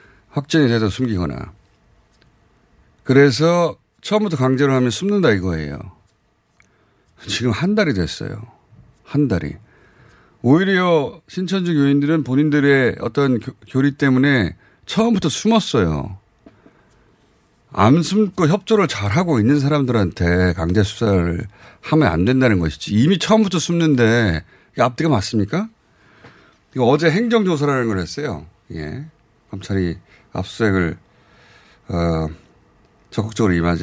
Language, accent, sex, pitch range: Korean, native, male, 95-155 Hz